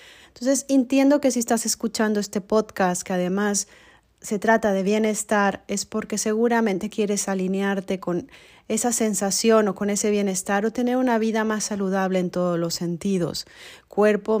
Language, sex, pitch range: Spanish, female, 180-220 Hz